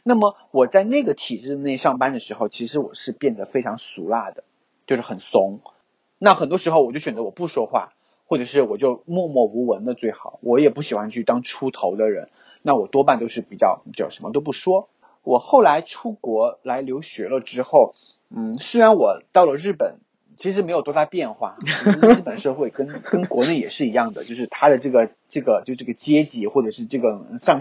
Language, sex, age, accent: Chinese, male, 30-49, native